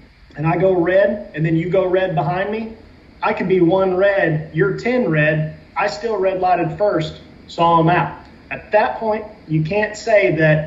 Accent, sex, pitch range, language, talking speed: American, male, 155-190 Hz, English, 190 wpm